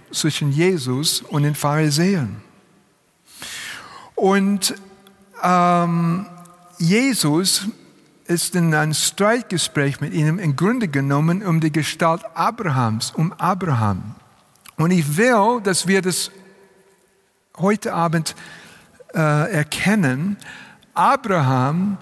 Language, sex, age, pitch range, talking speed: German, male, 60-79, 160-200 Hz, 95 wpm